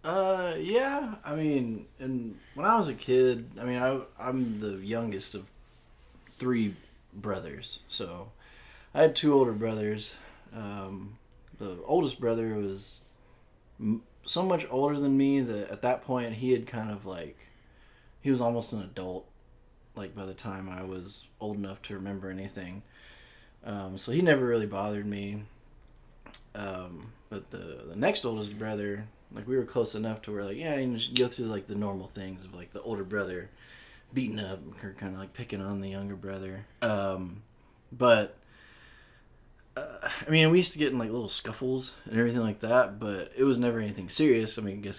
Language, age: English, 20-39